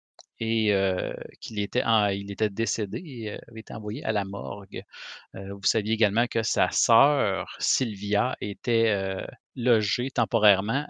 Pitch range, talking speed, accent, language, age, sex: 105-125 Hz, 155 wpm, Canadian, French, 30-49, male